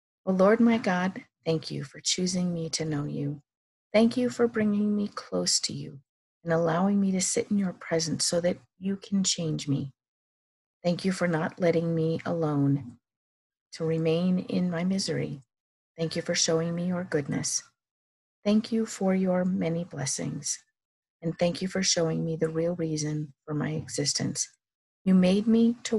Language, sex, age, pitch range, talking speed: English, female, 40-59, 145-190 Hz, 175 wpm